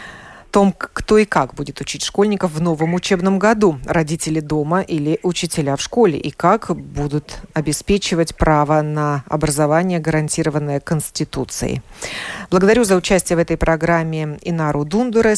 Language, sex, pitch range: Russian, female, 155-180 Hz